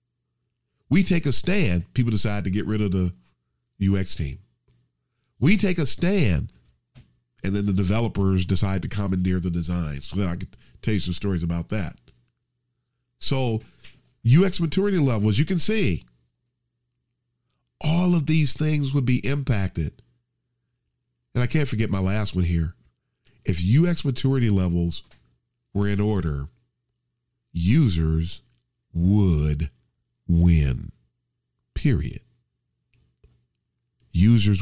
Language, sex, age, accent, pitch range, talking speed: English, male, 40-59, American, 85-120 Hz, 125 wpm